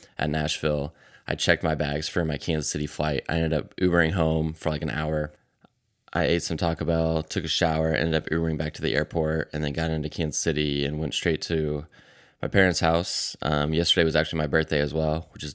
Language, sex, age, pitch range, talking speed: English, male, 10-29, 75-85 Hz, 225 wpm